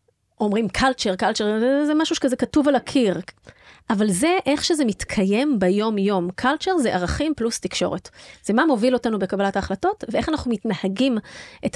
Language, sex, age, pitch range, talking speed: Hebrew, female, 30-49, 200-270 Hz, 160 wpm